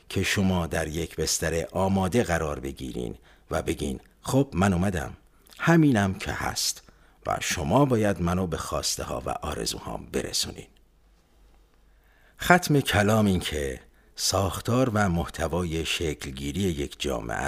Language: Persian